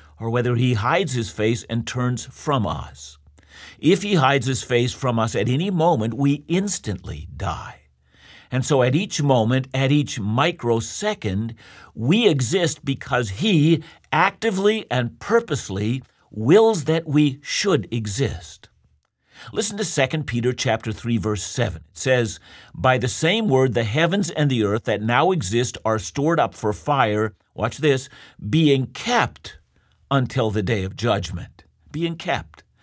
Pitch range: 110-155 Hz